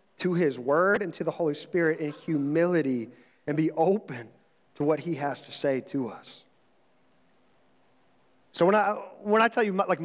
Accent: American